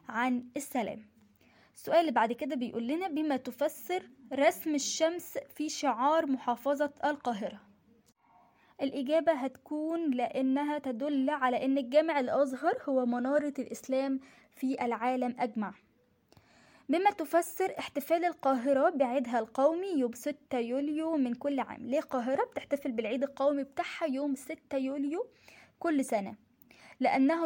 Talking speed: 120 wpm